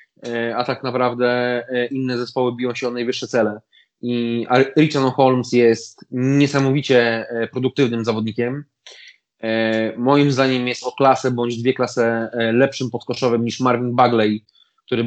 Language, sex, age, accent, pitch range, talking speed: Polish, male, 20-39, native, 120-140 Hz, 125 wpm